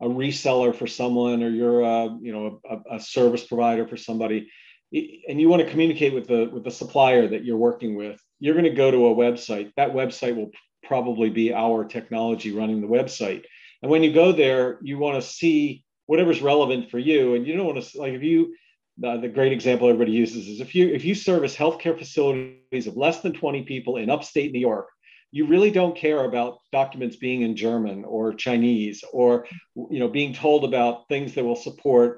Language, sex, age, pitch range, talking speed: English, male, 40-59, 115-145 Hz, 205 wpm